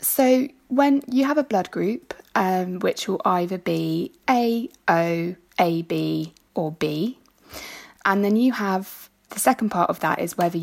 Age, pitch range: 20-39, 170-210 Hz